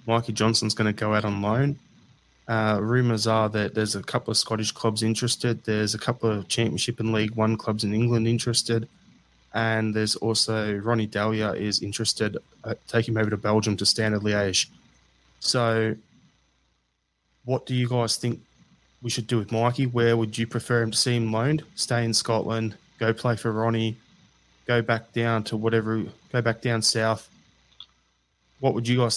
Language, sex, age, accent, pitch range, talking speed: English, male, 20-39, Australian, 105-115 Hz, 180 wpm